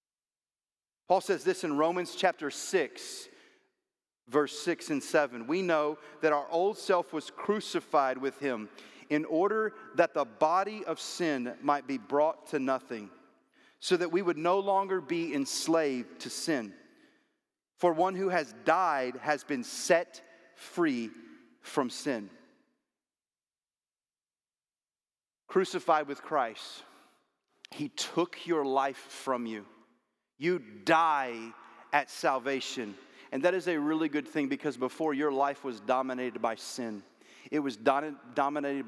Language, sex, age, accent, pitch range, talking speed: English, male, 40-59, American, 130-175 Hz, 130 wpm